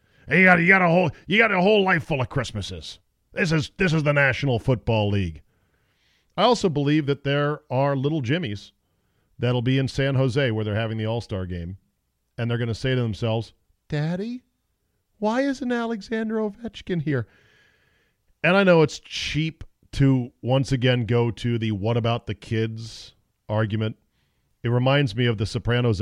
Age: 40-59